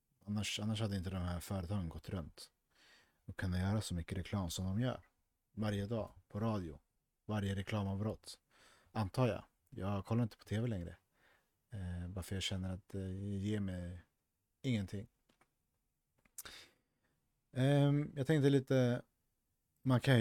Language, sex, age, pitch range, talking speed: Swedish, male, 40-59, 95-125 Hz, 140 wpm